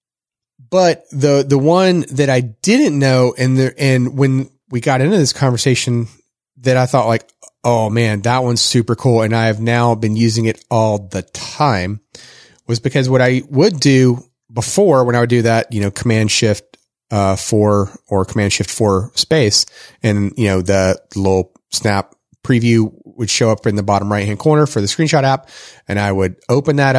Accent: American